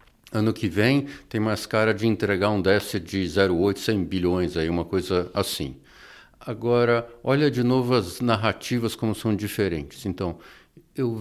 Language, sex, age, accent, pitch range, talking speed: English, male, 60-79, Brazilian, 100-135 Hz, 150 wpm